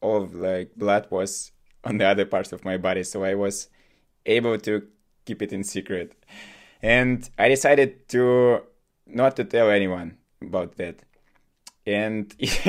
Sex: male